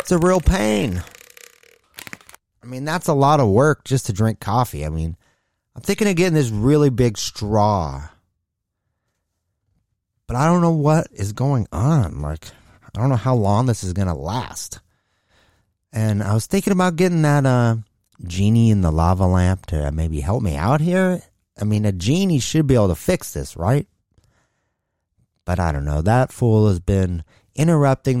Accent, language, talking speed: American, English, 175 wpm